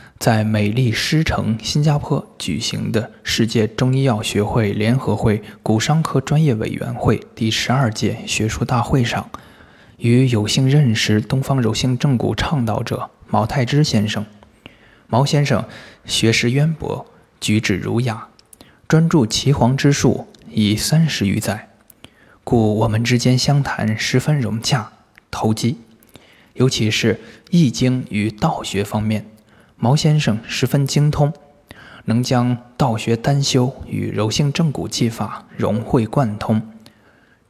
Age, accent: 20-39, native